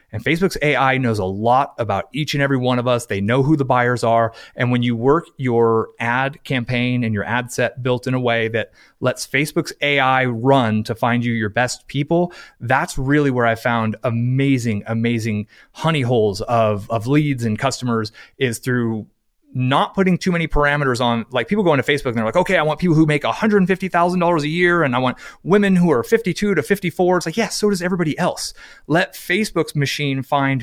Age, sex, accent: 30-49, male, American